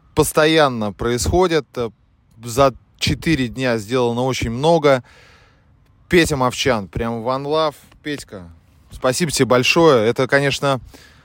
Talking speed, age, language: 100 wpm, 20-39, Russian